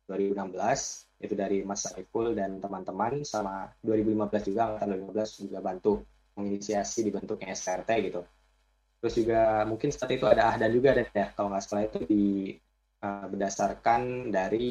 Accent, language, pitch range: native, Indonesian, 100-110 Hz